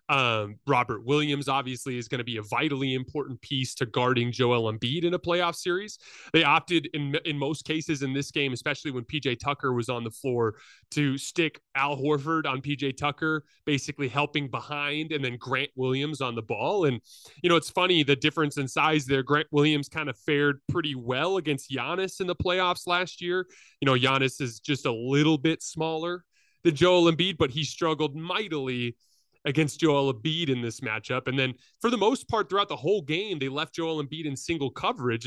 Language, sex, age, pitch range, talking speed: English, male, 20-39, 130-160 Hz, 200 wpm